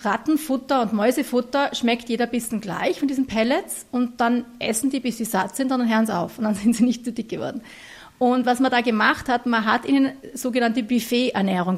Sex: female